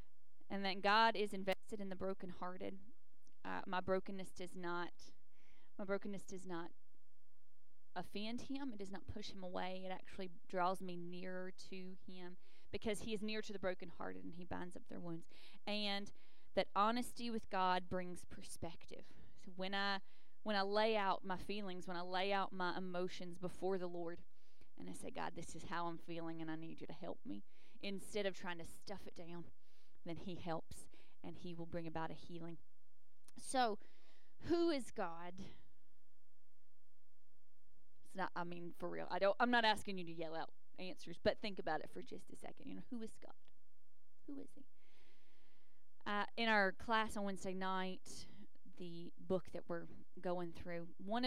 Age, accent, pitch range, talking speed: 20-39, American, 175-205 Hz, 180 wpm